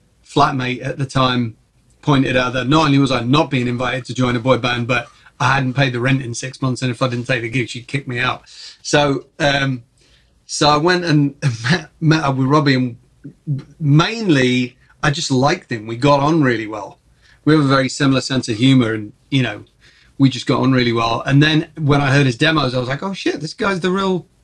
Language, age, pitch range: English, 30-49, 125-150 Hz